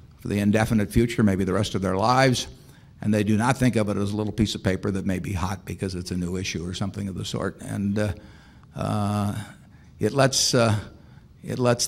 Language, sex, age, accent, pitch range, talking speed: English, male, 50-69, American, 105-125 Hz, 220 wpm